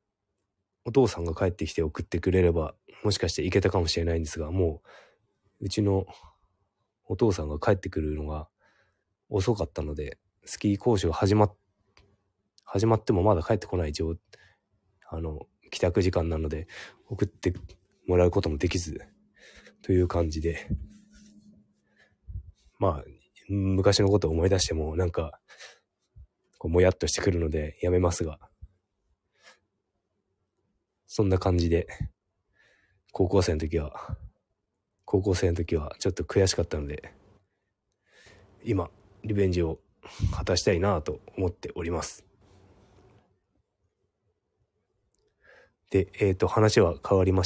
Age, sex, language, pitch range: 20-39, male, Japanese, 85-100 Hz